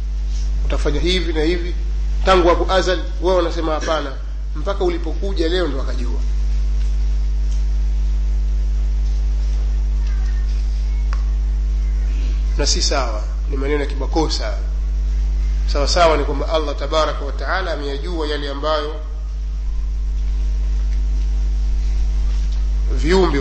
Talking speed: 85 wpm